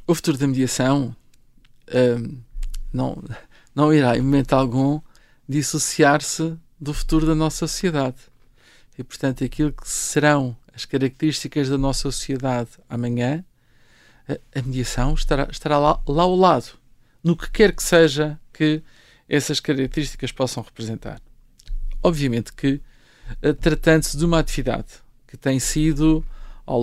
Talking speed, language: 125 wpm, Portuguese